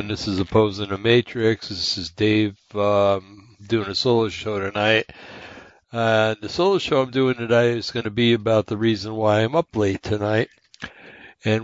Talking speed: 180 wpm